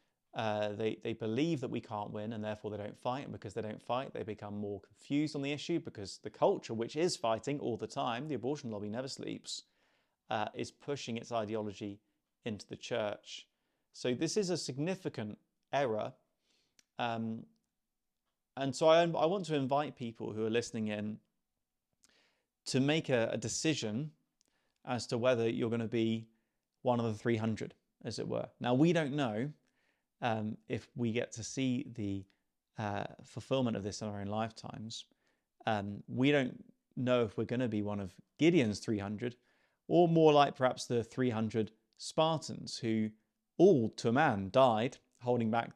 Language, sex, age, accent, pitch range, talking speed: English, male, 30-49, British, 105-130 Hz, 175 wpm